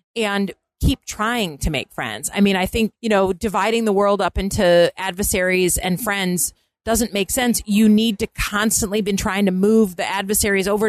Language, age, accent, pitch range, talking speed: English, 30-49, American, 180-220 Hz, 185 wpm